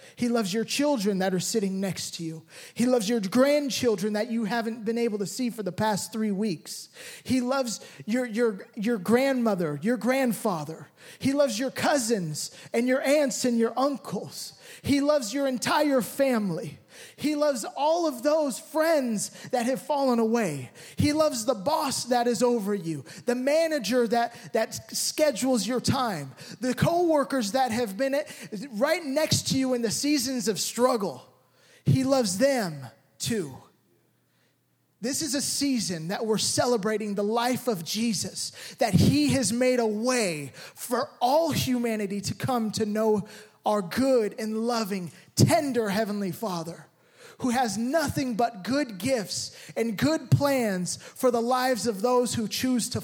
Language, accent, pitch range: English, American, 200-260 Hz